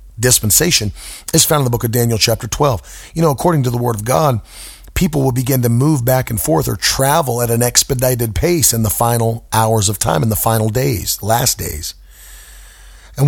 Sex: male